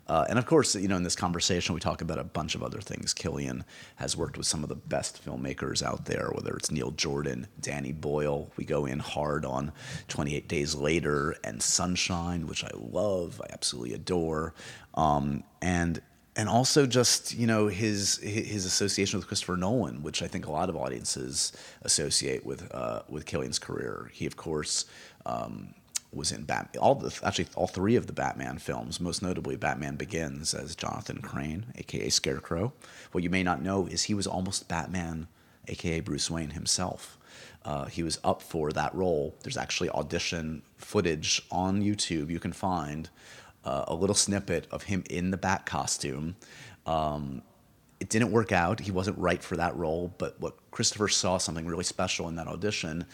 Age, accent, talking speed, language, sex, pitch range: 30-49, American, 180 wpm, English, male, 75-95 Hz